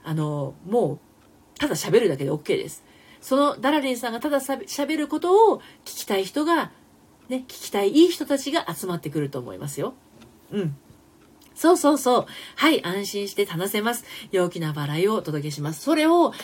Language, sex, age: Japanese, female, 40-59